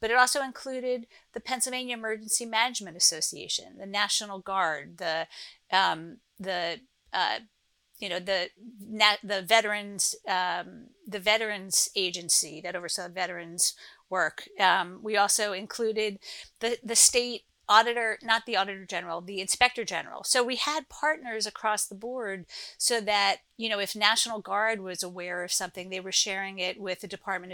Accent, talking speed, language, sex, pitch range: American, 125 wpm, English, female, 185-235 Hz